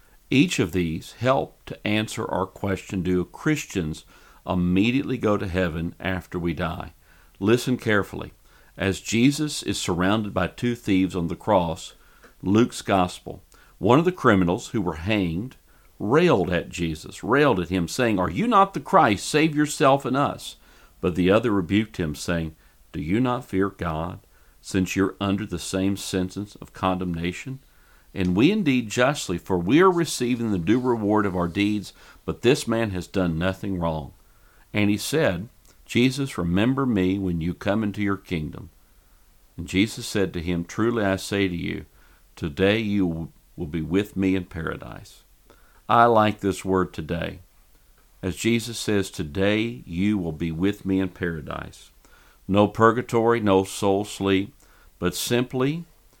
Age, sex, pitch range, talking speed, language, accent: 50-69, male, 90-115 Hz, 155 wpm, English, American